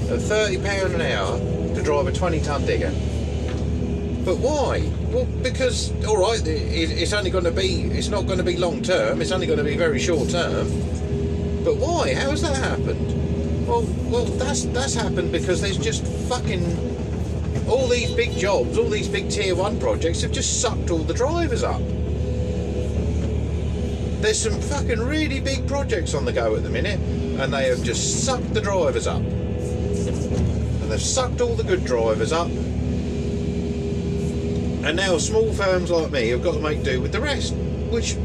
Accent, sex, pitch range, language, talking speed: British, male, 80-85 Hz, English, 175 wpm